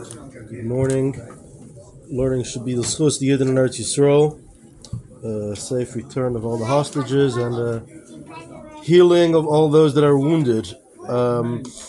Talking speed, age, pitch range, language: 140 wpm, 30-49, 130-165 Hz, English